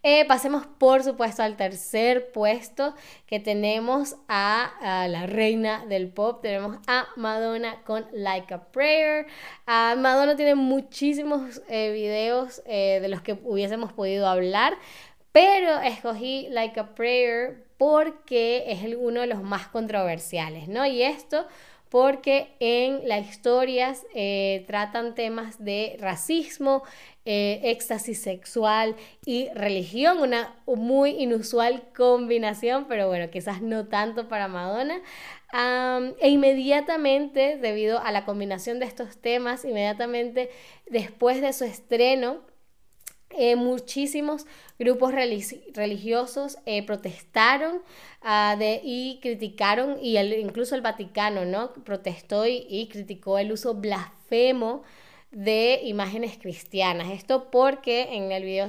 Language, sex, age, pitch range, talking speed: Spanish, female, 10-29, 205-255 Hz, 120 wpm